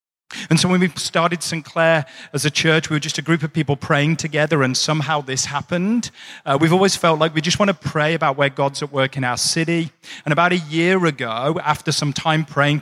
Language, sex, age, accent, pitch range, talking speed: English, male, 40-59, British, 140-170 Hz, 235 wpm